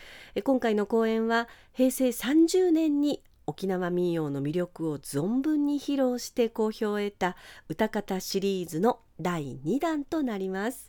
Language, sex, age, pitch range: Japanese, female, 40-59, 175-260 Hz